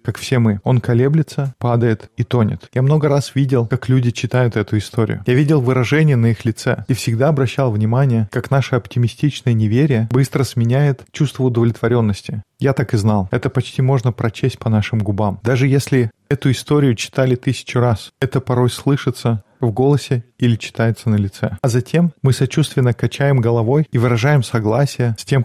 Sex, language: male, Russian